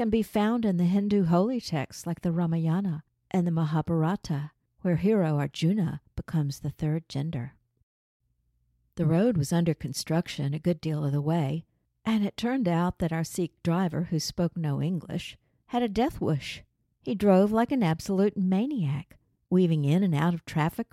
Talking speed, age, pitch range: 170 wpm, 50-69, 145-185 Hz